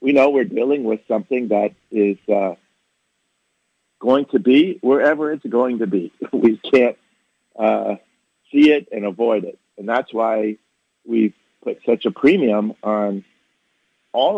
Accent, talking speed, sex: American, 145 wpm, male